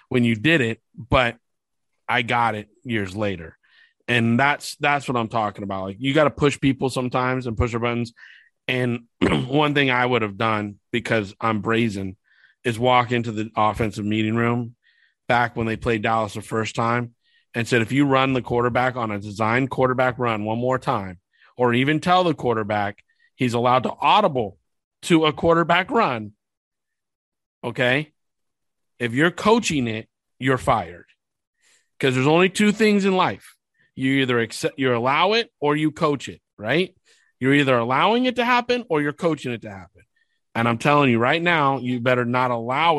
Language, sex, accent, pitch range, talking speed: English, male, American, 115-145 Hz, 180 wpm